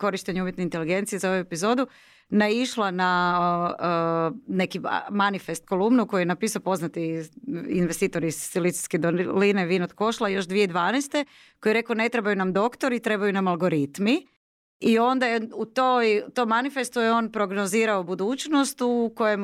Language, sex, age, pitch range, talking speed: Croatian, female, 30-49, 175-225 Hz, 150 wpm